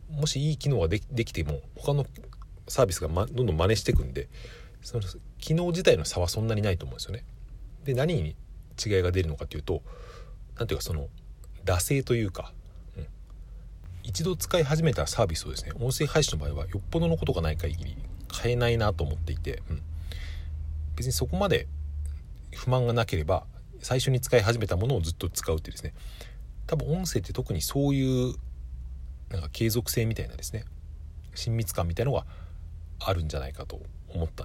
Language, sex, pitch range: Japanese, male, 80-120 Hz